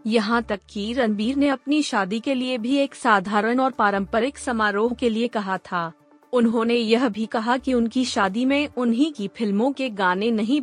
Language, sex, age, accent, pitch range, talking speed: Hindi, female, 30-49, native, 205-250 Hz, 185 wpm